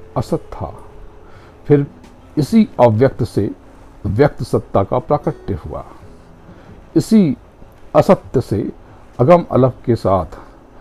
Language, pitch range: Hindi, 90-125 Hz